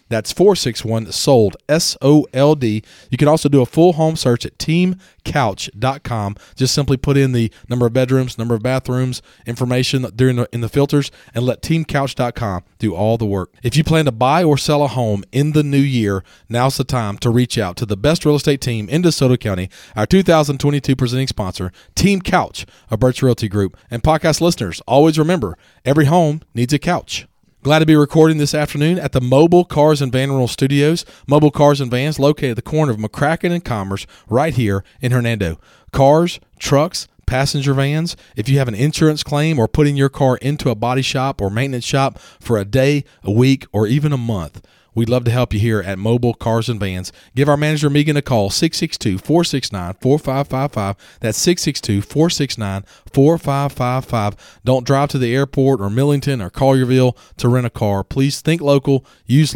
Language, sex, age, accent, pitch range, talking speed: English, male, 40-59, American, 115-145 Hz, 180 wpm